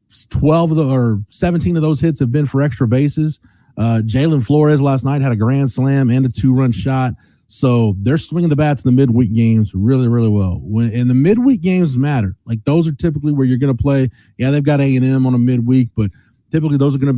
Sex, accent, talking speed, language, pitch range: male, American, 230 wpm, English, 115-140 Hz